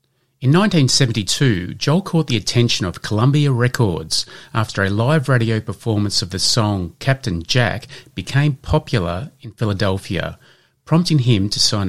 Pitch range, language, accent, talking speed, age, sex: 100-135 Hz, English, Australian, 135 wpm, 30-49, male